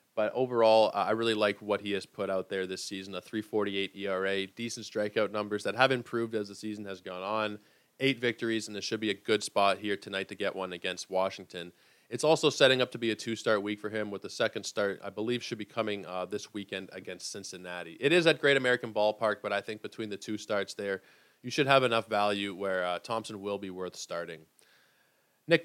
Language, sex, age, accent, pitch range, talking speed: English, male, 20-39, American, 100-120 Hz, 225 wpm